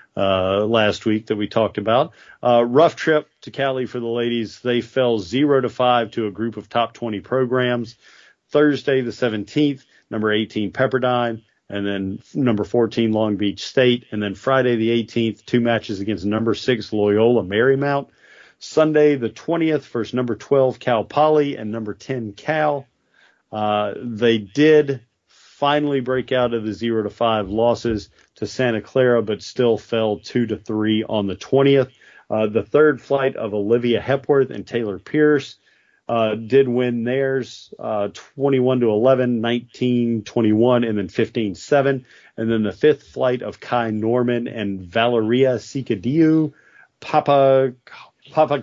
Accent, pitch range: American, 110-135 Hz